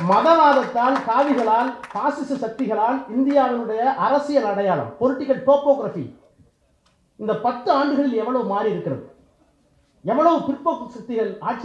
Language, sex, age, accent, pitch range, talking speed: Tamil, male, 30-49, native, 185-270 Hz, 95 wpm